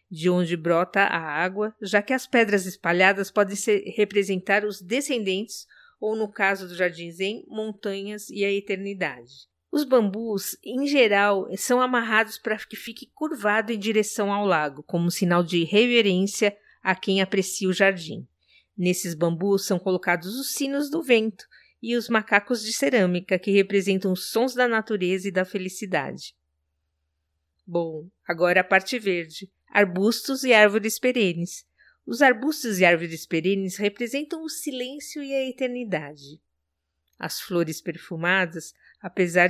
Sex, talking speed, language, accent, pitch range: female, 140 wpm, Portuguese, Brazilian, 180-235 Hz